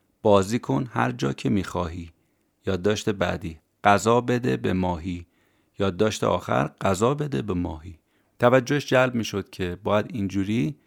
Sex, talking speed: male, 145 wpm